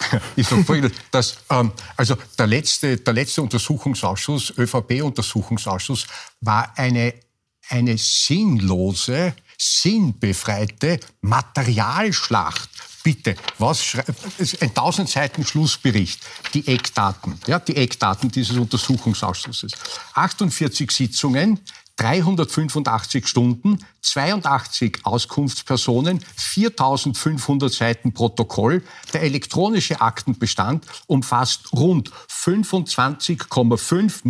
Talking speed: 80 wpm